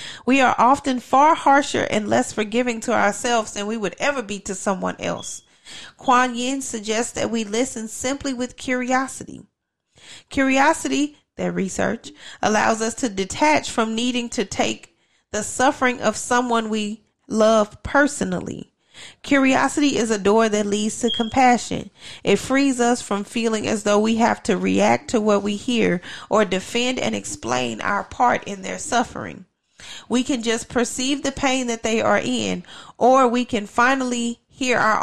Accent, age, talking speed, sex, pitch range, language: American, 30-49, 160 wpm, female, 210-250 Hz, English